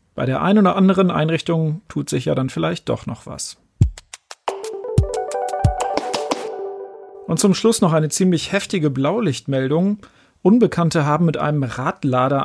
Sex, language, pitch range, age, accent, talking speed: male, German, 140-175 Hz, 40-59, German, 130 wpm